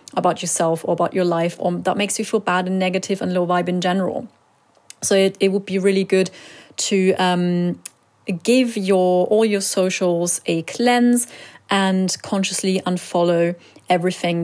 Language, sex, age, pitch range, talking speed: English, female, 30-49, 180-225 Hz, 160 wpm